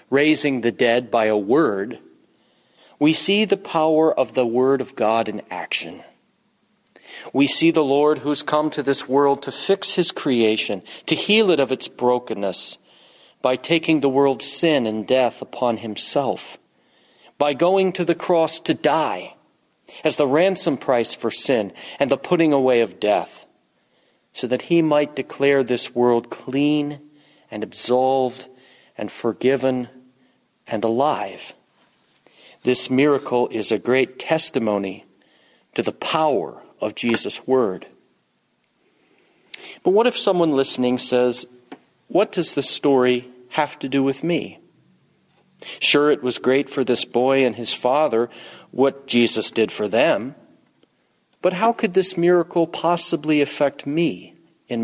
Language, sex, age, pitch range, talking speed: English, male, 40-59, 125-155 Hz, 140 wpm